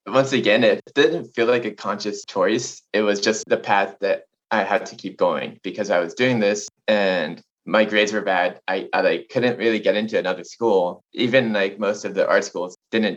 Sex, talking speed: male, 215 wpm